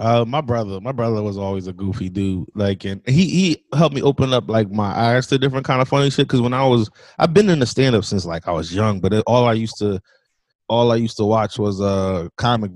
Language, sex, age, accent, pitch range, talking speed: English, male, 20-39, American, 105-125 Hz, 260 wpm